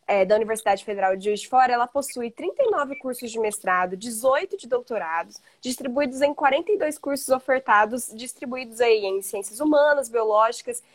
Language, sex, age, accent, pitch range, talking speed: Portuguese, female, 20-39, Brazilian, 230-290 Hz, 150 wpm